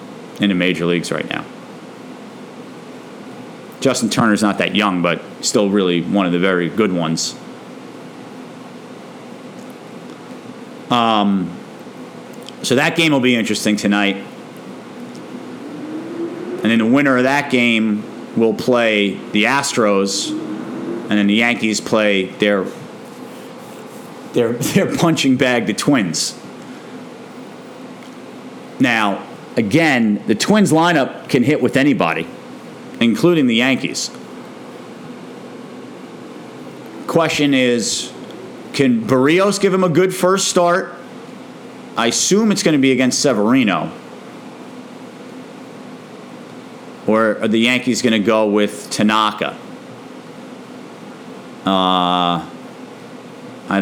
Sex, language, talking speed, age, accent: male, English, 105 wpm, 40-59, American